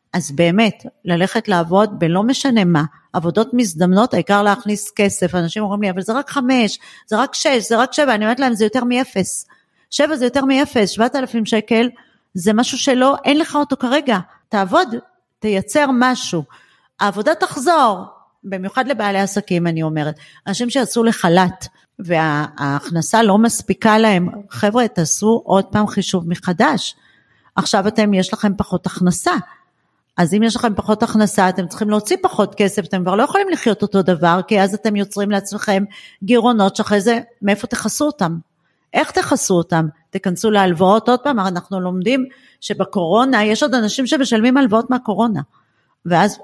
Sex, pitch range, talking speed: female, 185-240 Hz, 155 wpm